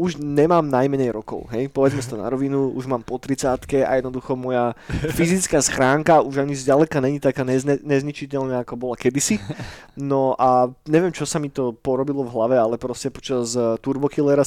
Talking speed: 175 wpm